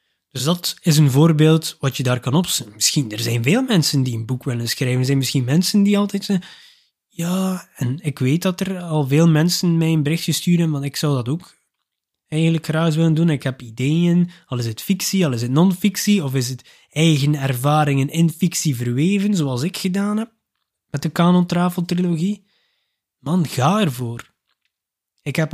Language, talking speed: Dutch, 190 wpm